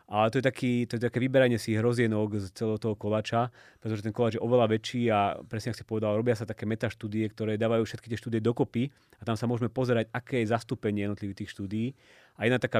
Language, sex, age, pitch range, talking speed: Slovak, male, 30-49, 100-120 Hz, 230 wpm